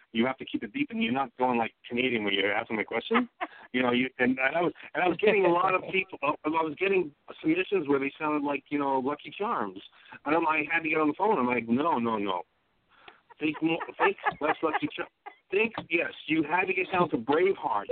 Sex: male